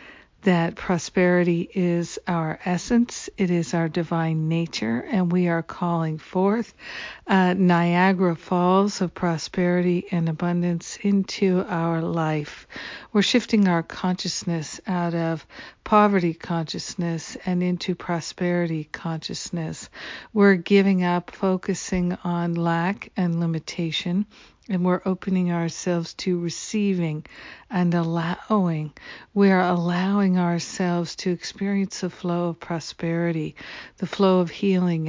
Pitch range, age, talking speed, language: 170-190 Hz, 60-79, 115 wpm, English